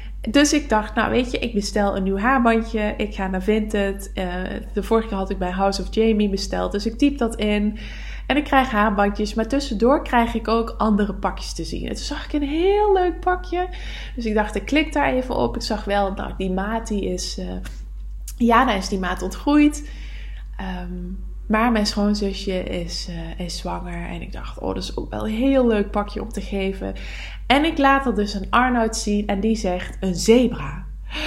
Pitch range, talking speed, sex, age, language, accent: 195-275 Hz, 210 wpm, female, 20-39, English, Dutch